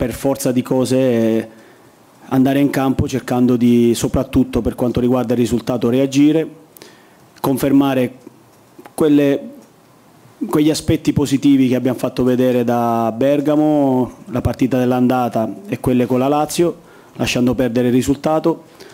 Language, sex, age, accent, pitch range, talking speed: Italian, male, 30-49, native, 120-135 Hz, 125 wpm